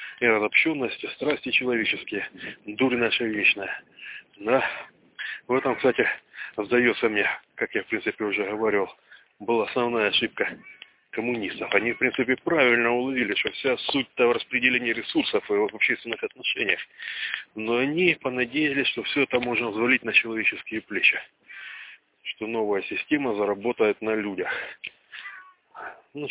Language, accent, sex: Russian, native, male